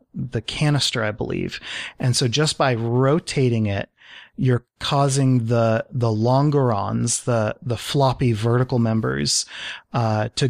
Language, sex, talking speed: English, male, 125 wpm